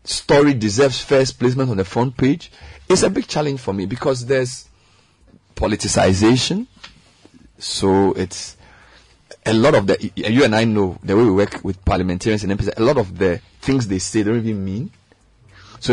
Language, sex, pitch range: English, male, 100-130 Hz